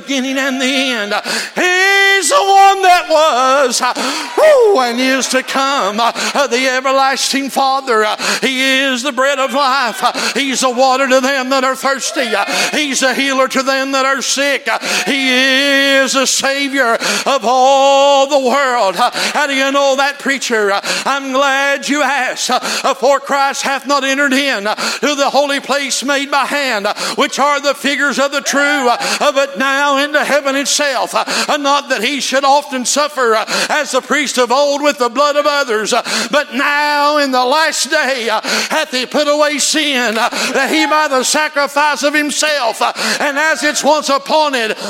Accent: American